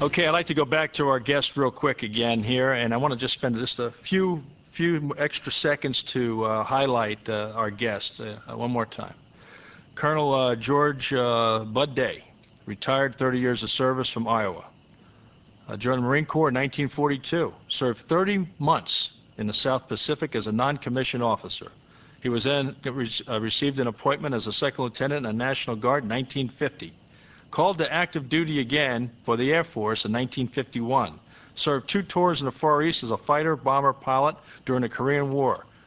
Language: English